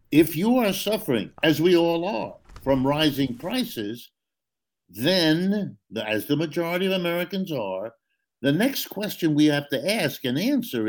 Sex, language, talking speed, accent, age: male, English, 150 wpm, American, 60-79